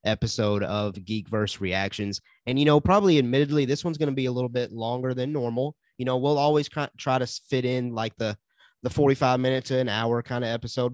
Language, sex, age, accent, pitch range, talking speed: English, male, 30-49, American, 105-130 Hz, 220 wpm